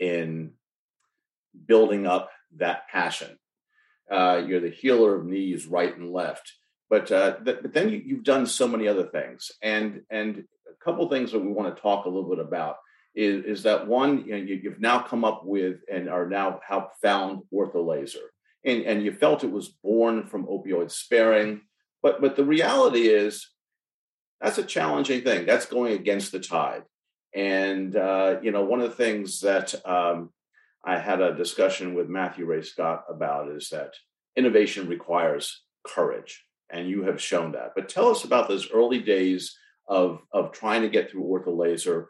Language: English